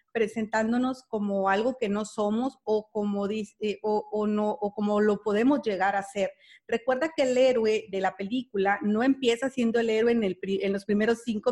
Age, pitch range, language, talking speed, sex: 40-59, 205-240 Hz, Spanish, 195 wpm, female